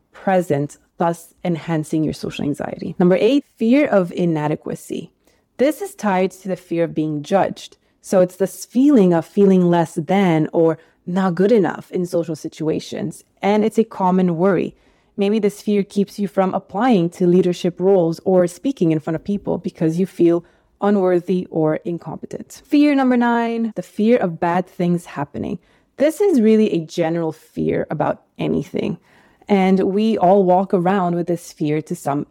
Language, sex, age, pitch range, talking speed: English, female, 30-49, 170-200 Hz, 165 wpm